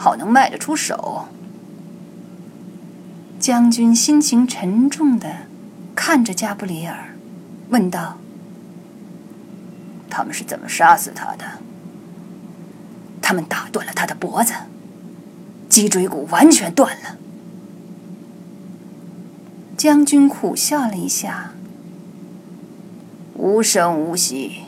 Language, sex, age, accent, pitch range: Chinese, female, 30-49, native, 185-235 Hz